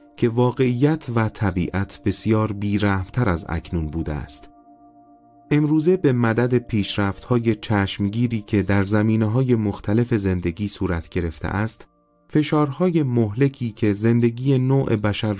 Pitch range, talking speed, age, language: 90-125 Hz, 120 wpm, 30-49, Persian